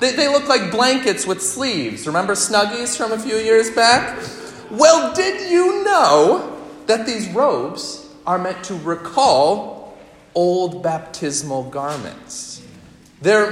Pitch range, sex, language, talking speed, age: 160-225 Hz, male, English, 130 wpm, 30-49